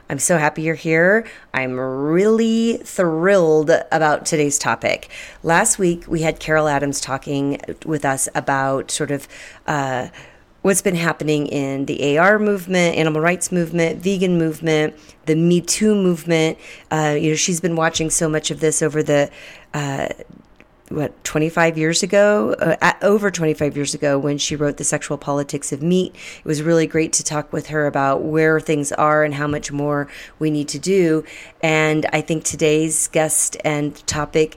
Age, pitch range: 30-49, 145-170 Hz